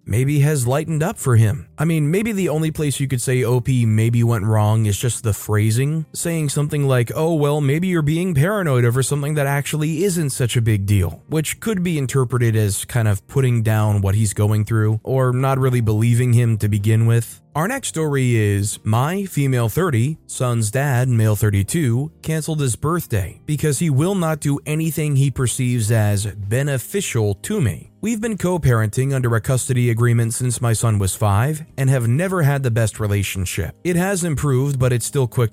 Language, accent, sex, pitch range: English, American, male, 110-150 Hz